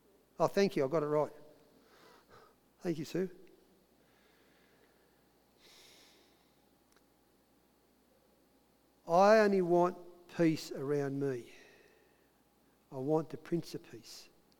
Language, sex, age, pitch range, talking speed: English, male, 50-69, 160-200 Hz, 90 wpm